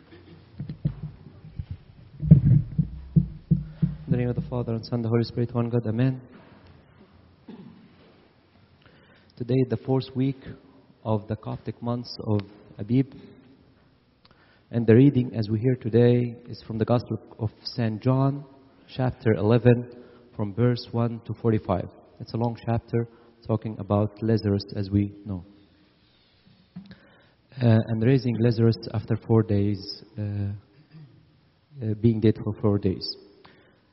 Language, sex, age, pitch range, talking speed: English, male, 30-49, 110-130 Hz, 125 wpm